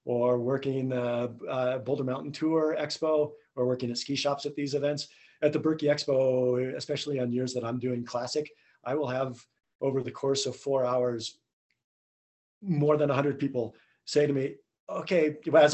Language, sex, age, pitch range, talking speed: English, male, 40-59, 125-150 Hz, 170 wpm